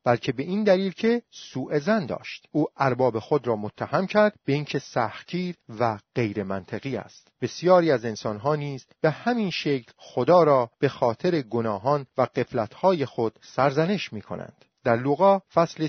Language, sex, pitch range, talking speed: Persian, male, 120-175 Hz, 160 wpm